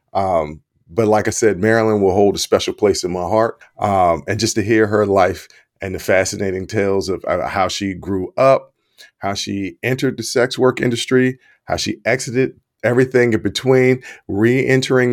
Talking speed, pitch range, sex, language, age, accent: 180 wpm, 105-125 Hz, male, English, 40-59, American